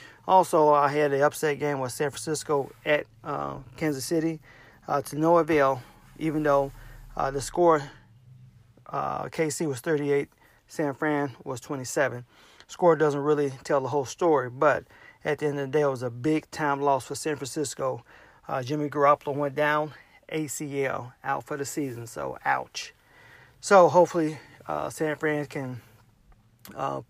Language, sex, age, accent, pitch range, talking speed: English, male, 40-59, American, 130-150 Hz, 160 wpm